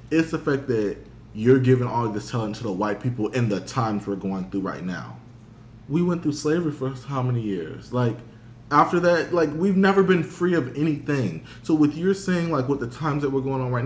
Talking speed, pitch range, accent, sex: 225 wpm, 110-160 Hz, American, male